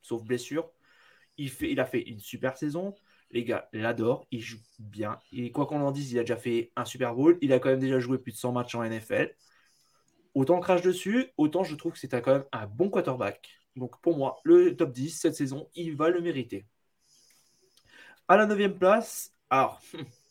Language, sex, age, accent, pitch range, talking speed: French, male, 20-39, French, 130-170 Hz, 210 wpm